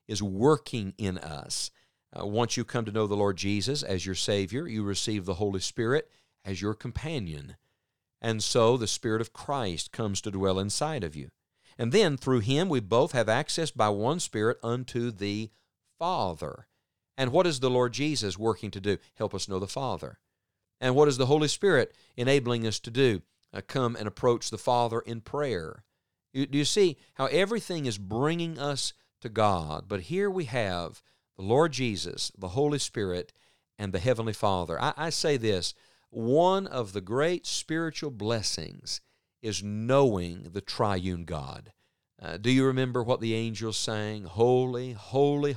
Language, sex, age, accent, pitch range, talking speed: English, male, 50-69, American, 100-140 Hz, 175 wpm